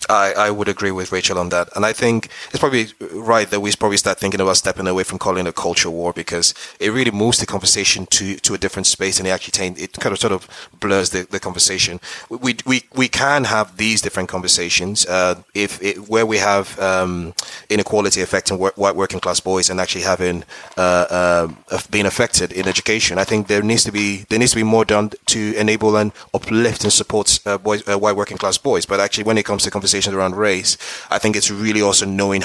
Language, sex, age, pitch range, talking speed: English, male, 30-49, 95-105 Hz, 225 wpm